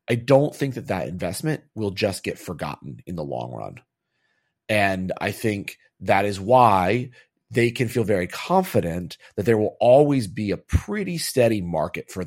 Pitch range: 90-120 Hz